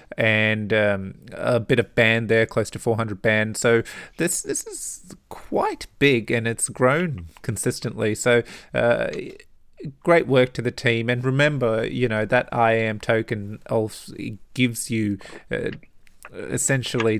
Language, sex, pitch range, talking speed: English, male, 105-120 Hz, 145 wpm